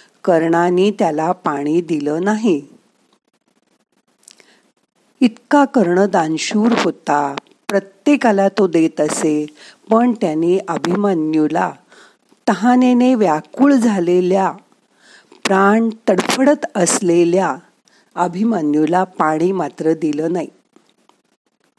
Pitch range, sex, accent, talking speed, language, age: 165-220 Hz, female, native, 50 wpm, Marathi, 50-69